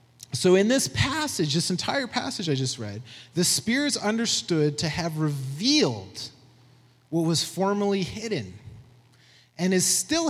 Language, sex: English, male